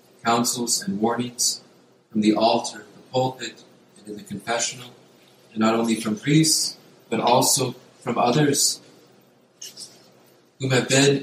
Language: English